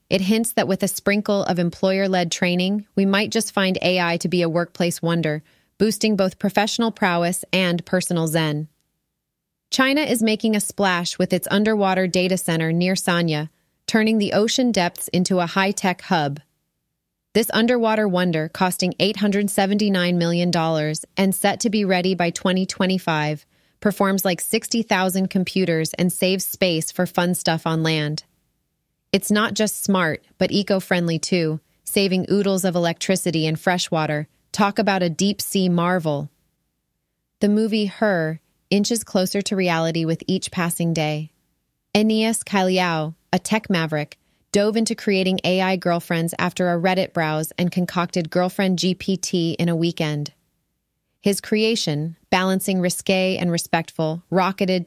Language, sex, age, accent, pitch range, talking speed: English, female, 30-49, American, 165-200 Hz, 140 wpm